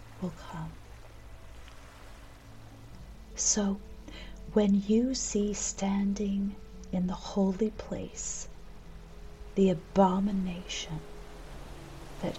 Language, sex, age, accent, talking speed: English, female, 40-59, American, 70 wpm